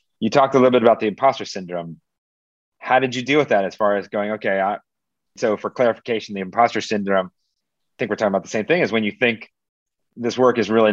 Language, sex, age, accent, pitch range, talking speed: English, male, 30-49, American, 95-110 Hz, 235 wpm